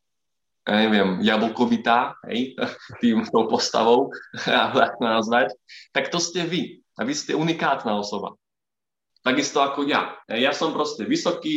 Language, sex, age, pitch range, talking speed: Slovak, male, 20-39, 110-145 Hz, 120 wpm